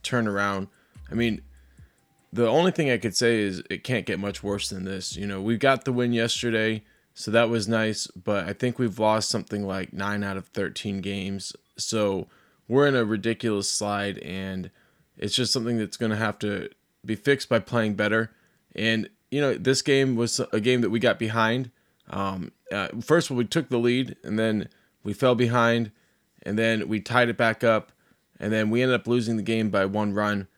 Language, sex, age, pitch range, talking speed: English, male, 20-39, 105-125 Hz, 205 wpm